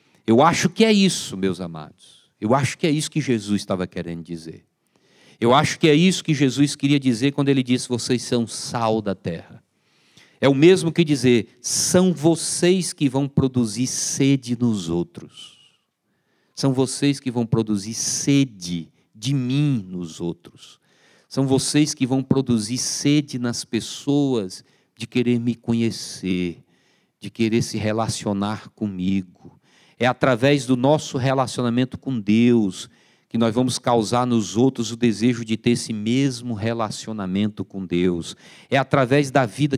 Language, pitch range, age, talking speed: Portuguese, 110-140 Hz, 50-69, 150 wpm